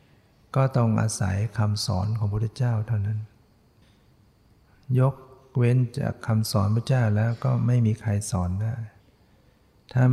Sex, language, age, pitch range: male, Thai, 60-79, 100-120 Hz